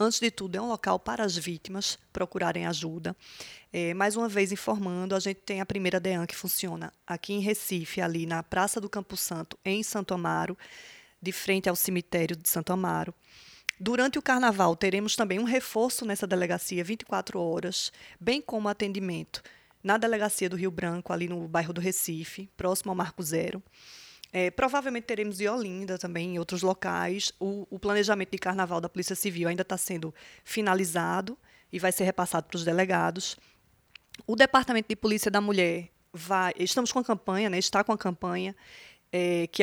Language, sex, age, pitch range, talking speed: Portuguese, female, 20-39, 175-210 Hz, 175 wpm